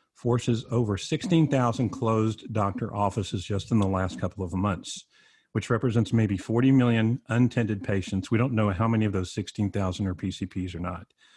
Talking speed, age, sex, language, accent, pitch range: 170 wpm, 50-69, male, English, American, 100-120 Hz